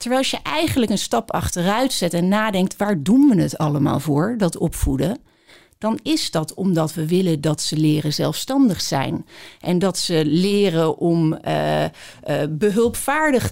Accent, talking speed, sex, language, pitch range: Dutch, 160 wpm, female, Dutch, 165-235 Hz